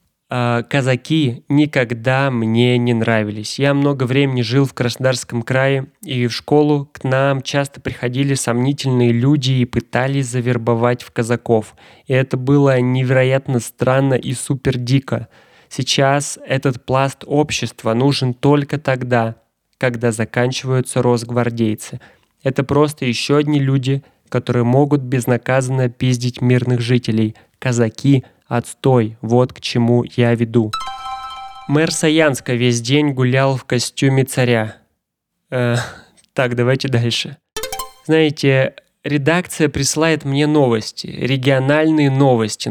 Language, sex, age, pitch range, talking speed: Russian, male, 20-39, 120-140 Hz, 115 wpm